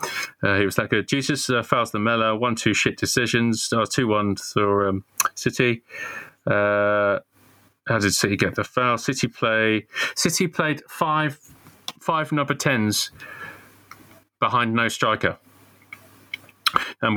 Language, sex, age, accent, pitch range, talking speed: English, male, 30-49, British, 100-135 Hz, 125 wpm